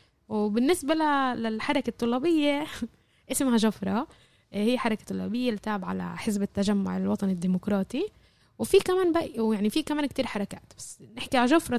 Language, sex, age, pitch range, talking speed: Arabic, female, 10-29, 205-265 Hz, 130 wpm